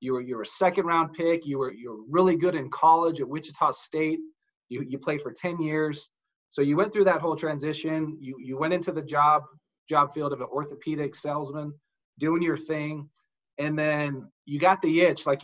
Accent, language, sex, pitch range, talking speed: American, English, male, 140-170 Hz, 210 wpm